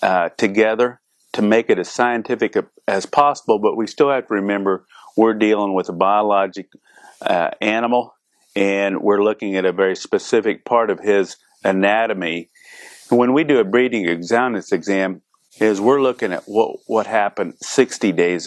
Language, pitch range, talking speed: English, 100-120 Hz, 160 wpm